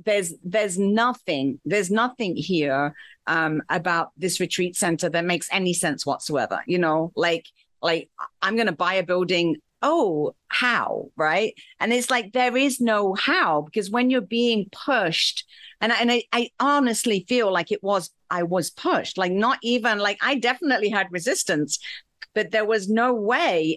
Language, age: English, 50-69